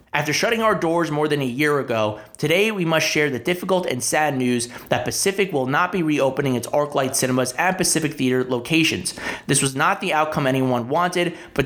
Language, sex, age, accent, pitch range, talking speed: English, male, 30-49, American, 125-160 Hz, 200 wpm